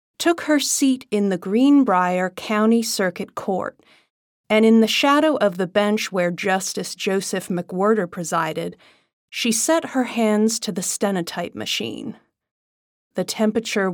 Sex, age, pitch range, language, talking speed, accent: female, 30-49, 185-235 Hz, English, 135 wpm, American